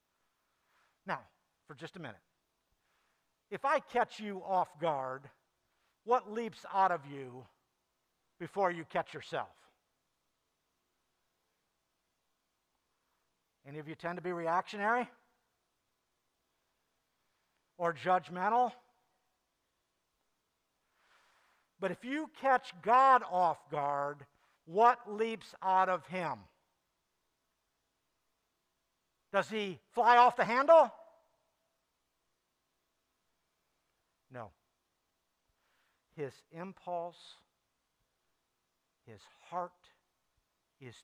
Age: 60-79